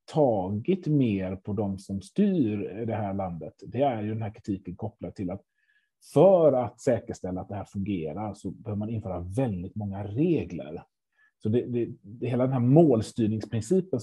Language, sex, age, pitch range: Swedish, male, 30-49, 100-130 Hz